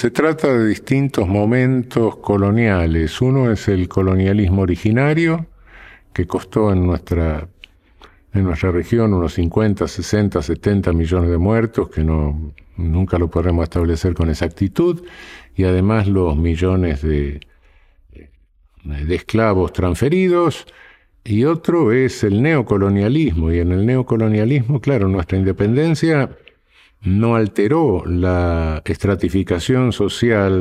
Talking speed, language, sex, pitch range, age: 110 wpm, Spanish, male, 85-115 Hz, 50-69